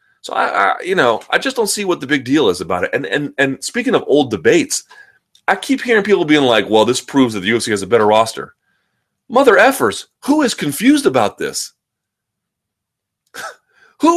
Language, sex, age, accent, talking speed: English, male, 30-49, American, 200 wpm